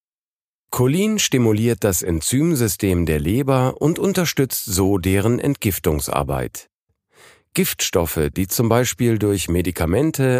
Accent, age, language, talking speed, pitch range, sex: German, 50-69, German, 100 wpm, 90-130 Hz, male